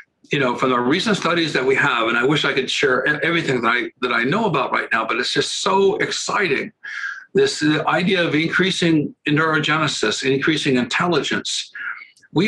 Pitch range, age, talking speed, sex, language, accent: 135-205 Hz, 60-79, 180 wpm, male, English, American